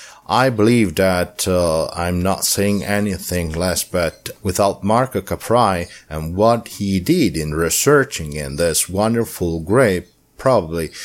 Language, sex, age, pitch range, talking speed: English, male, 50-69, 85-105 Hz, 130 wpm